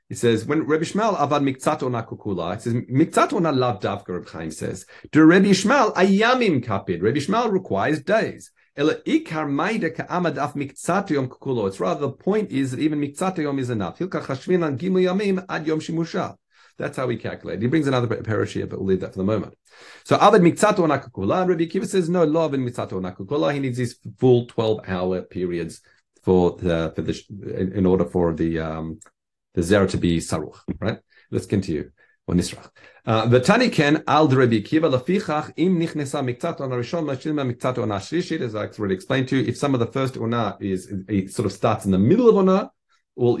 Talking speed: 180 wpm